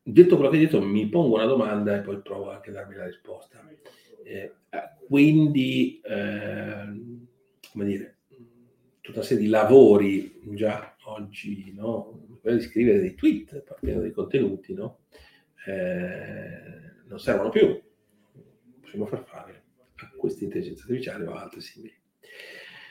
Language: Italian